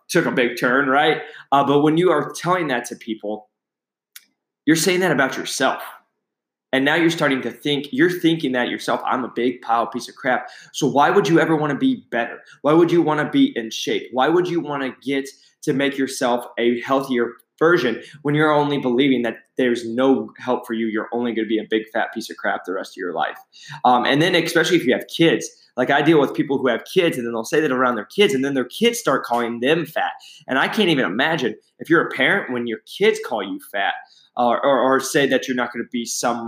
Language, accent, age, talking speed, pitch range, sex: English, American, 20-39, 245 wpm, 120-160 Hz, male